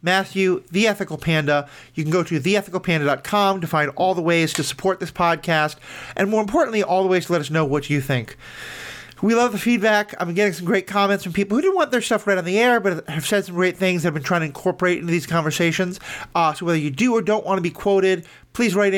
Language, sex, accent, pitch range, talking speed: English, male, American, 155-200 Hz, 255 wpm